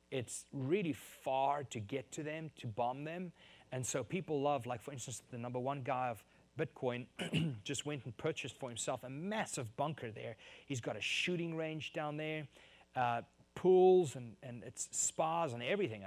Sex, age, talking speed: male, 30-49, 180 wpm